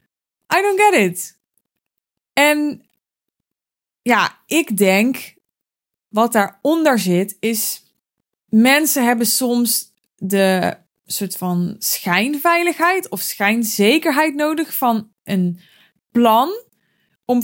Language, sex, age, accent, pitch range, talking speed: Dutch, female, 20-39, Dutch, 195-260 Hz, 90 wpm